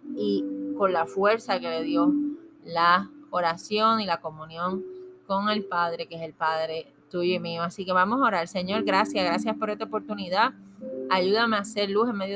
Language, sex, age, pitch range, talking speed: Spanish, female, 20-39, 180-215 Hz, 190 wpm